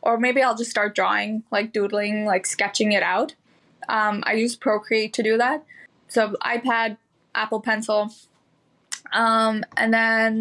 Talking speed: 150 wpm